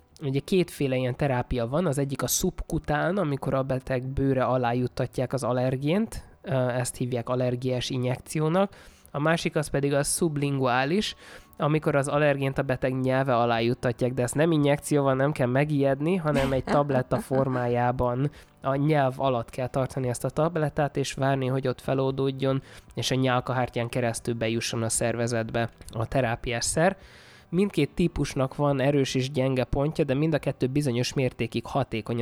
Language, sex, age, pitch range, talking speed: Hungarian, male, 20-39, 125-145 Hz, 155 wpm